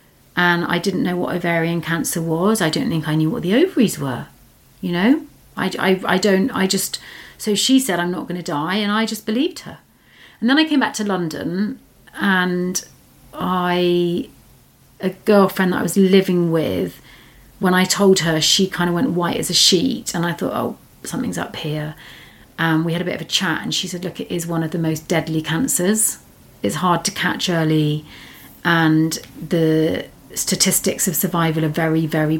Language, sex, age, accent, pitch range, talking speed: English, female, 40-59, British, 170-225 Hz, 195 wpm